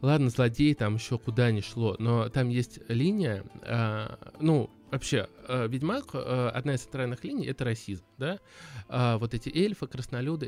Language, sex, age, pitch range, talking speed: Russian, male, 20-39, 110-140 Hz, 165 wpm